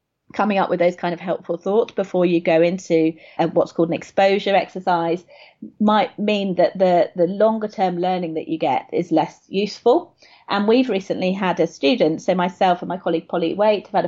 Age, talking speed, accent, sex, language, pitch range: 30-49, 190 wpm, British, female, English, 170-200 Hz